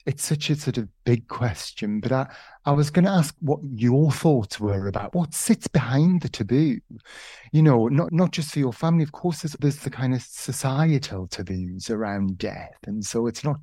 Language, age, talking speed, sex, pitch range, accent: English, 30-49, 205 wpm, male, 100-130 Hz, British